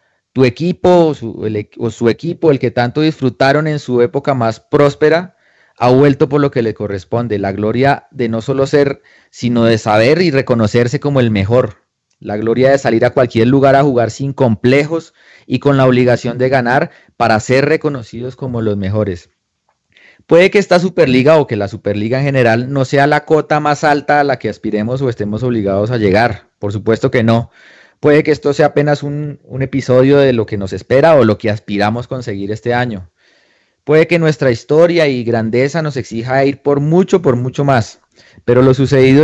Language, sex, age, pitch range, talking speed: Spanish, male, 30-49, 115-150 Hz, 190 wpm